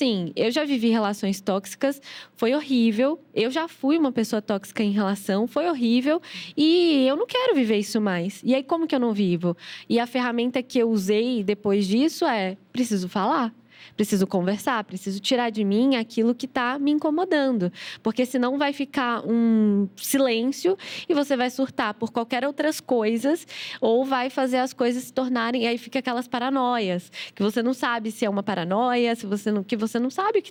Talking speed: 185 wpm